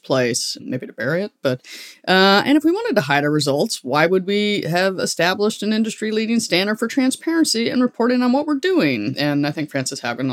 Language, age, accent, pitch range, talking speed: English, 30-49, American, 130-190 Hz, 215 wpm